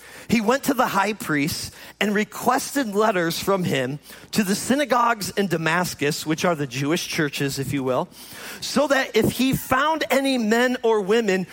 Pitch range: 165-250 Hz